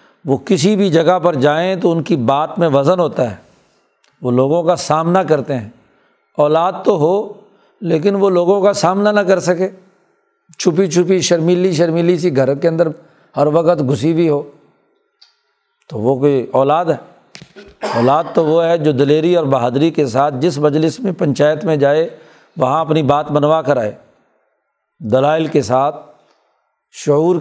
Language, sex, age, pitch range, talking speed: Urdu, male, 60-79, 145-180 Hz, 165 wpm